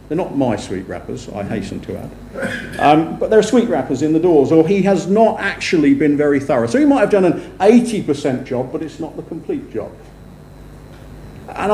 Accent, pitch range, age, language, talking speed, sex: British, 130-180 Hz, 50-69, English, 210 wpm, male